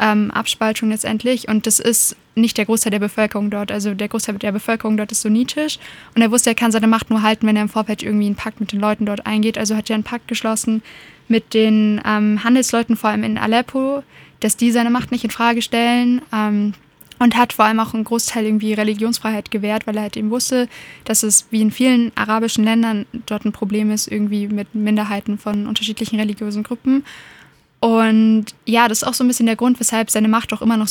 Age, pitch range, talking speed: 10-29, 215-230 Hz, 220 wpm